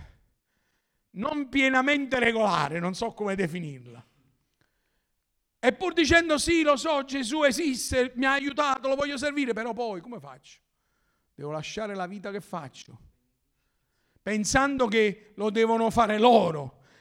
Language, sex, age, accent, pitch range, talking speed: Italian, male, 50-69, native, 145-245 Hz, 125 wpm